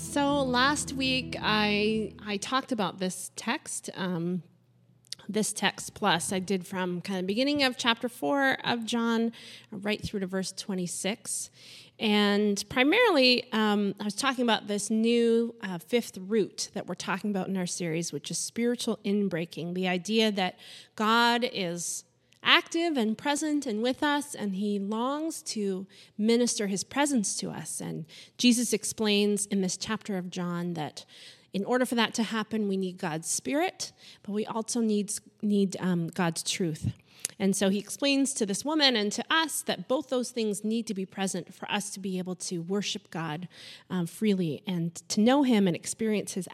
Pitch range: 180-230 Hz